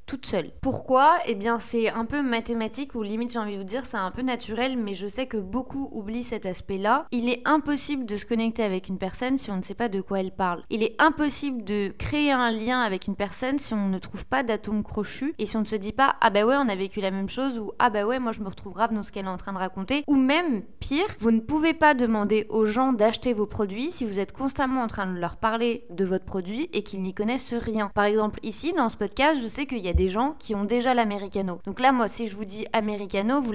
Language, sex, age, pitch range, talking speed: French, female, 20-39, 205-255 Hz, 275 wpm